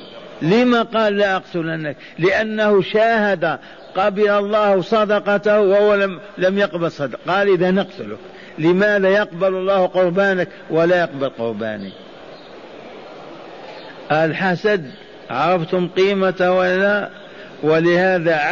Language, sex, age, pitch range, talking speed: Arabic, male, 50-69, 165-200 Hz, 95 wpm